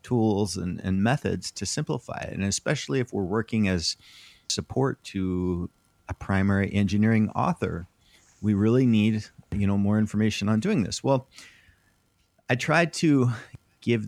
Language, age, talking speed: English, 30-49, 145 wpm